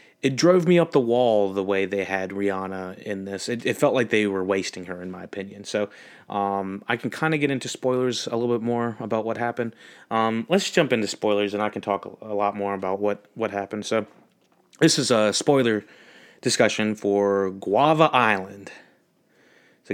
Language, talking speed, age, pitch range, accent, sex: English, 200 wpm, 30-49, 100-125 Hz, American, male